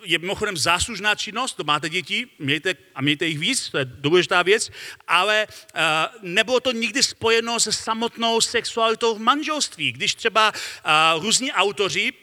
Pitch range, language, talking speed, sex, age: 185-225 Hz, Czech, 155 wpm, male, 40-59